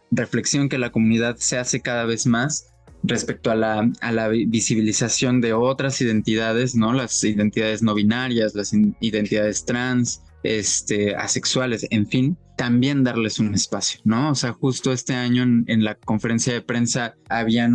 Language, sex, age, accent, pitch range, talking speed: Spanish, male, 20-39, Mexican, 110-125 Hz, 160 wpm